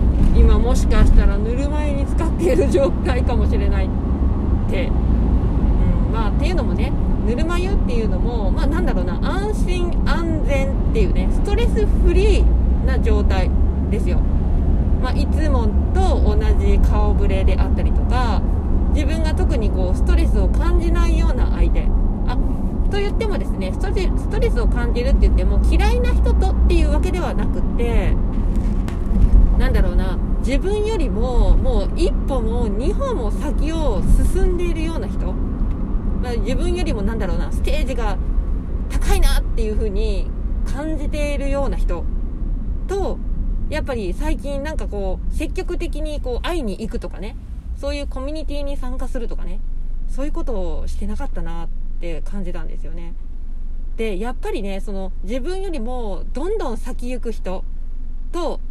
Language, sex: Japanese, female